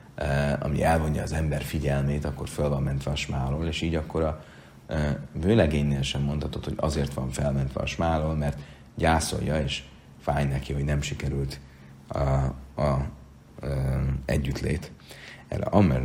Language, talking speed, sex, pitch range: Hungarian, 140 wpm, male, 70-80 Hz